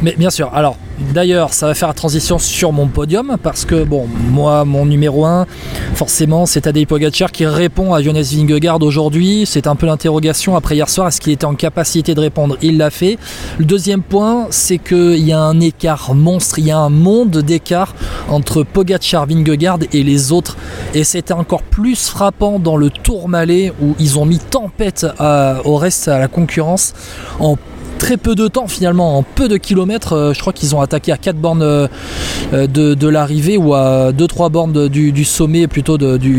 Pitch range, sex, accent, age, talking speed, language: 150-185 Hz, male, French, 20-39, 200 wpm, French